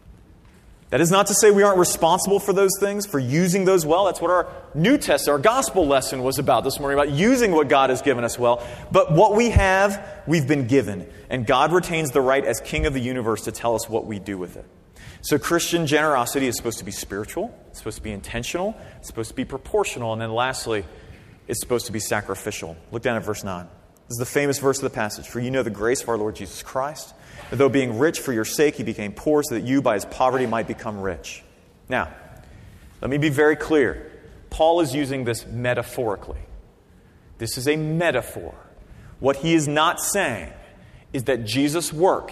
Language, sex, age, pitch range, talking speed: English, male, 30-49, 110-155 Hz, 215 wpm